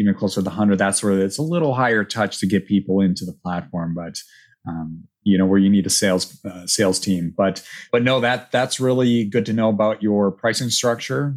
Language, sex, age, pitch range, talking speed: English, male, 30-49, 100-120 Hz, 225 wpm